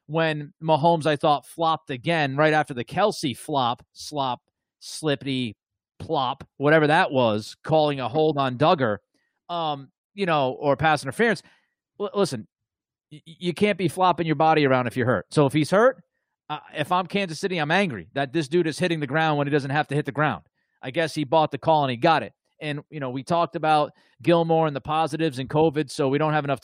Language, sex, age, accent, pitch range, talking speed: English, male, 30-49, American, 140-170 Hz, 205 wpm